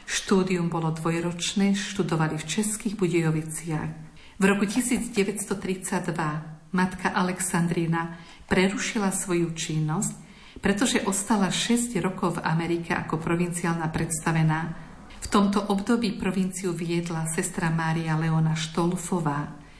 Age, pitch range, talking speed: 50-69, 165-195 Hz, 100 wpm